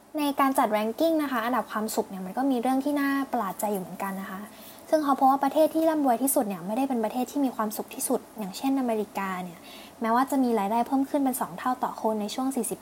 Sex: female